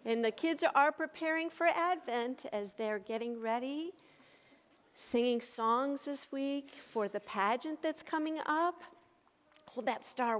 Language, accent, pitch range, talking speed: English, American, 220-305 Hz, 140 wpm